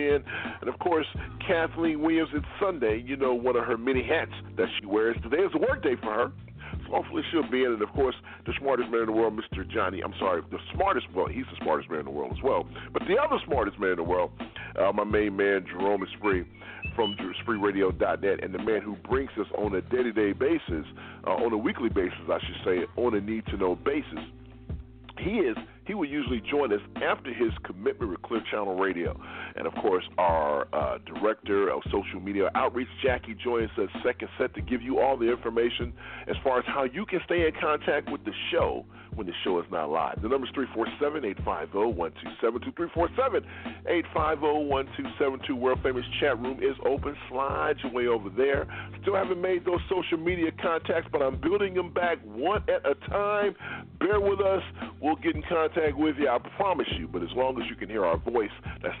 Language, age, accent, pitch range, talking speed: English, 40-59, American, 105-170 Hz, 210 wpm